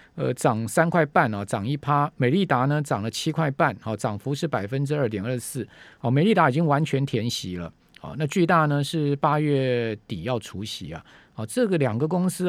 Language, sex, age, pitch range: Chinese, male, 50-69, 115-160 Hz